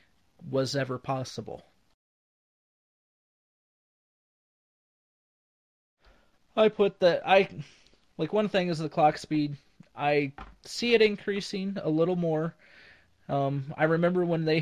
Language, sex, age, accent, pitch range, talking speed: English, male, 20-39, American, 130-155 Hz, 105 wpm